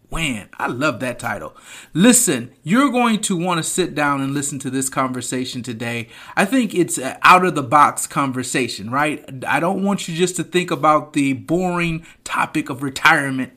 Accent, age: American, 30-49